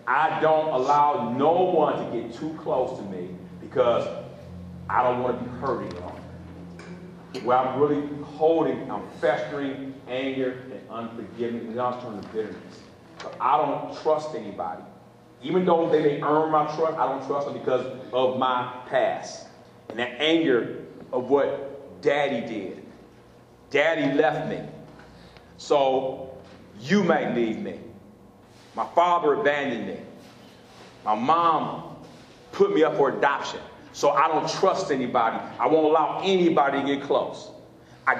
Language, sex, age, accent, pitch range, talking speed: English, male, 40-59, American, 125-190 Hz, 145 wpm